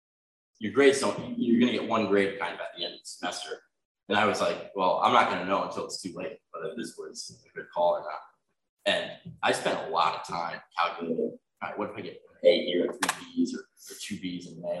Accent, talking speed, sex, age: American, 235 wpm, male, 20-39